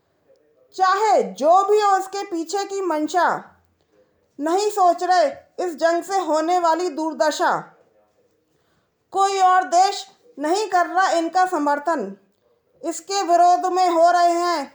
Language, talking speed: Hindi, 125 wpm